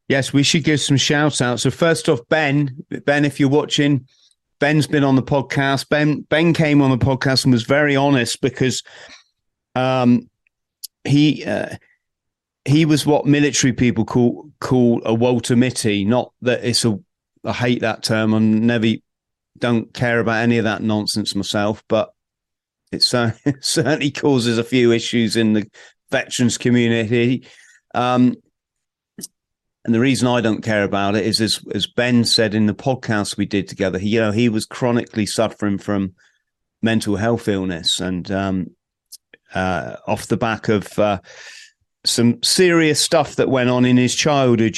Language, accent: English, British